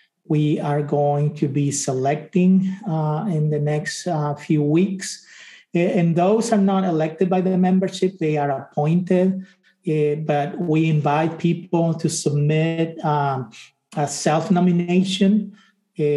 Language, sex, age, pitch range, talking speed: English, male, 50-69, 150-185 Hz, 125 wpm